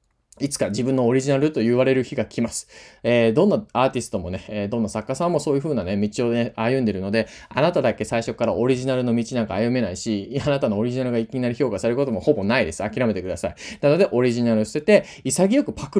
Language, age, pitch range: Japanese, 20-39, 110-150 Hz